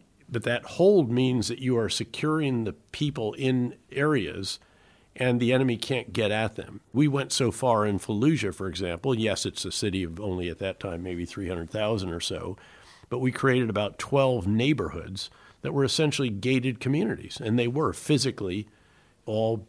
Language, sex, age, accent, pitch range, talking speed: English, male, 50-69, American, 100-130 Hz, 170 wpm